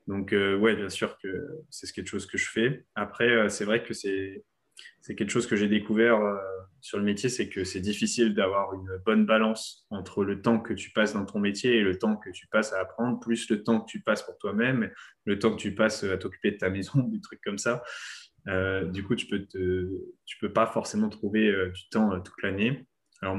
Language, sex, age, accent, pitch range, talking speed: French, male, 20-39, French, 95-110 Hz, 235 wpm